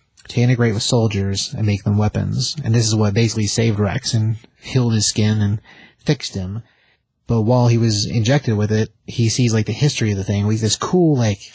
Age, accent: 30-49, American